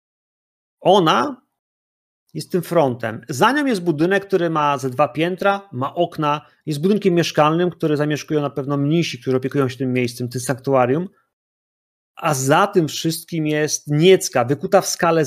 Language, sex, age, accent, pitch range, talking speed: Polish, male, 30-49, native, 130-180 Hz, 155 wpm